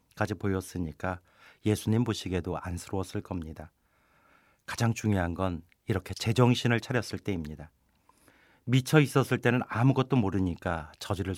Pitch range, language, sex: 85-110 Hz, Korean, male